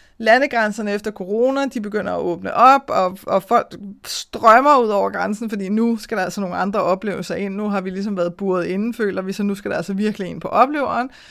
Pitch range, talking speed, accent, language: 200-250 Hz, 225 wpm, native, Danish